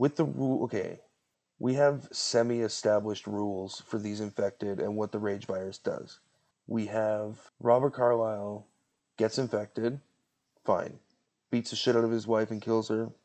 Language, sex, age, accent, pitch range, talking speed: English, male, 30-49, American, 105-115 Hz, 155 wpm